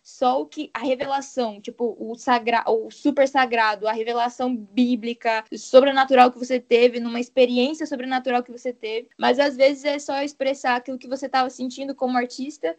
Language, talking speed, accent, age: Portuguese, 175 wpm, Brazilian, 10-29